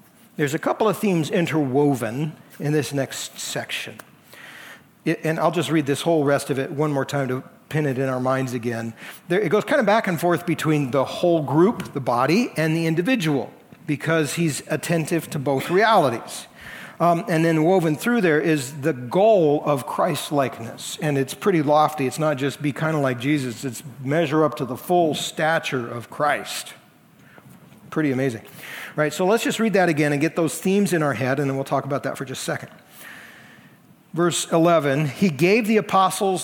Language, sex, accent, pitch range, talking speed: English, male, American, 145-175 Hz, 190 wpm